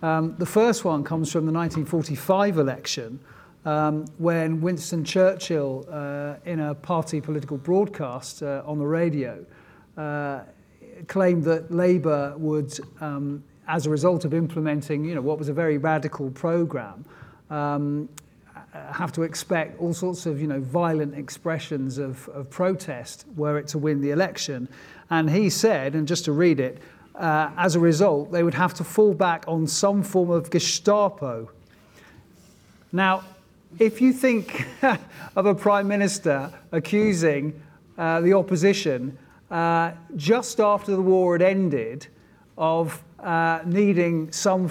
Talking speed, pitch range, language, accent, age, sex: 145 wpm, 150-185 Hz, English, British, 40-59, male